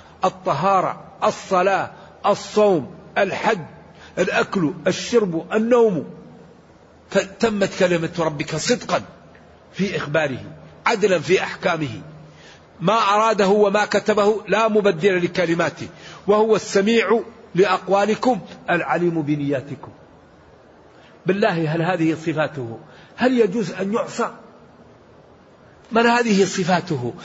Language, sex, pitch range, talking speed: English, male, 155-215 Hz, 85 wpm